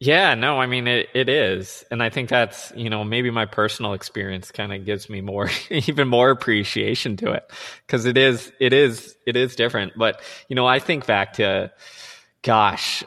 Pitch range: 100-120 Hz